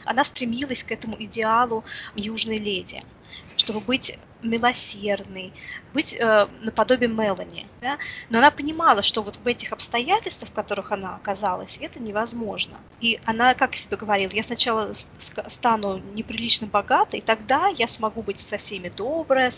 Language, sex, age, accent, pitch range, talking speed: Russian, female, 20-39, native, 210-250 Hz, 140 wpm